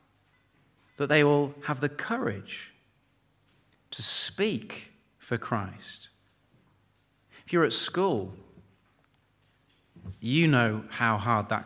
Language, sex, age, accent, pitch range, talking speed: English, male, 40-59, British, 110-145 Hz, 100 wpm